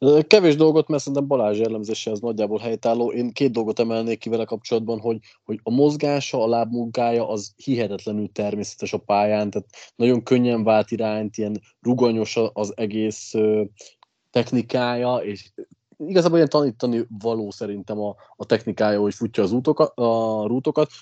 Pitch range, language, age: 105-130 Hz, Hungarian, 20-39